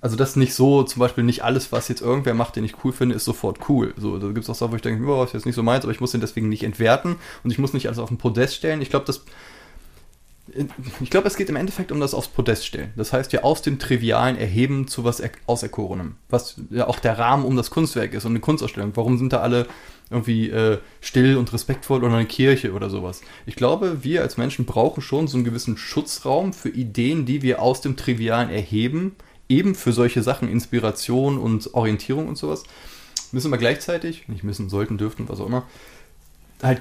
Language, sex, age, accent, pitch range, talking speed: German, male, 20-39, German, 115-140 Hz, 225 wpm